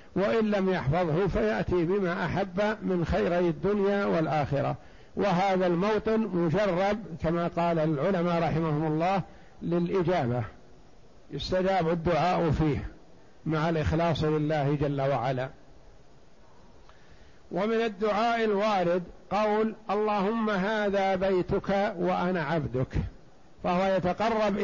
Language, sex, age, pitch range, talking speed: Arabic, male, 60-79, 165-205 Hz, 95 wpm